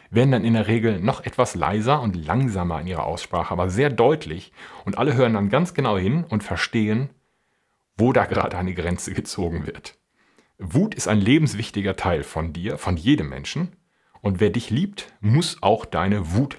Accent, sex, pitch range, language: German, male, 90-130 Hz, German